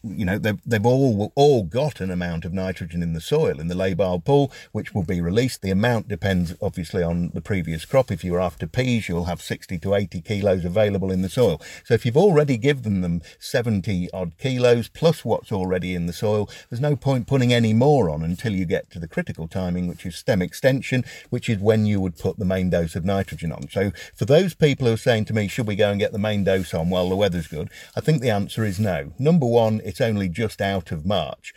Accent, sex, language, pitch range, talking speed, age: British, male, English, 90-130 Hz, 240 wpm, 50-69